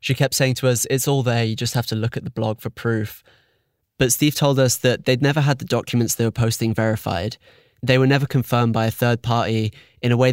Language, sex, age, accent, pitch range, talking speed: English, male, 20-39, British, 110-130 Hz, 250 wpm